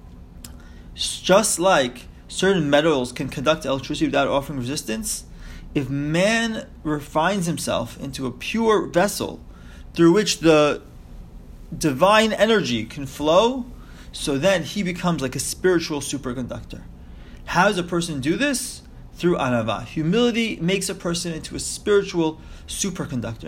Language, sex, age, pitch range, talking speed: English, male, 30-49, 125-185 Hz, 125 wpm